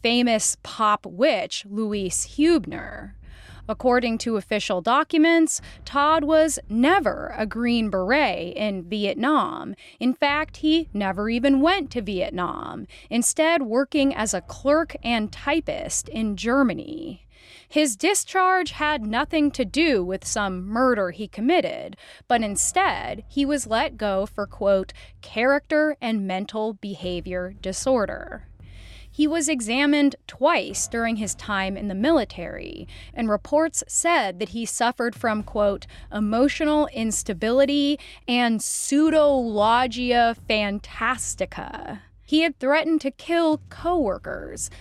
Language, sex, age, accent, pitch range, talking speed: English, female, 20-39, American, 210-300 Hz, 115 wpm